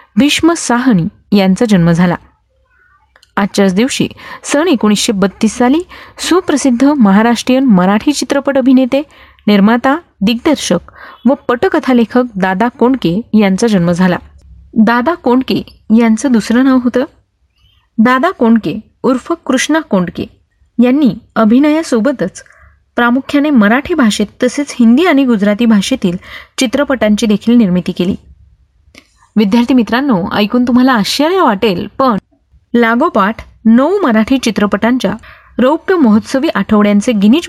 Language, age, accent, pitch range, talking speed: Marathi, 30-49, native, 205-265 Hz, 105 wpm